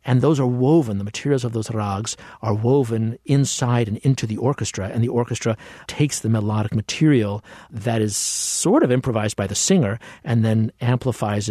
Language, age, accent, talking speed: English, 50-69, American, 175 wpm